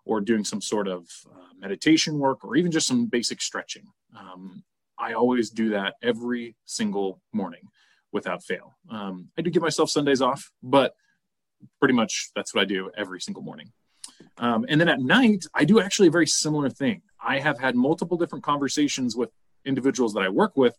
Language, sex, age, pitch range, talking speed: English, male, 30-49, 120-180 Hz, 190 wpm